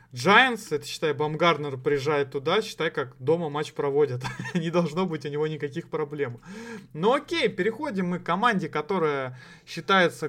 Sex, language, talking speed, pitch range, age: male, Russian, 150 wpm, 150-190 Hz, 20-39